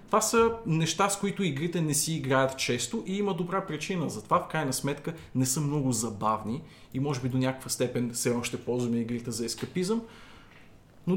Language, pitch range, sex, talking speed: Bulgarian, 125-180 Hz, male, 195 wpm